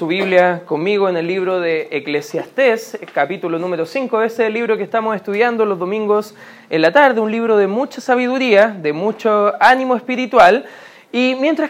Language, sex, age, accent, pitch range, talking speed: Spanish, male, 20-39, Argentinian, 190-255 Hz, 175 wpm